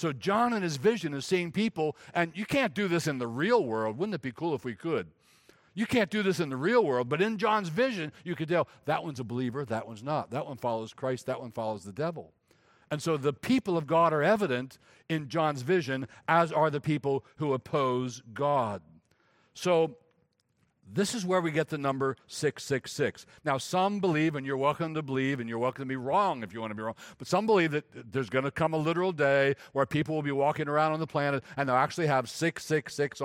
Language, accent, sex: English, American, male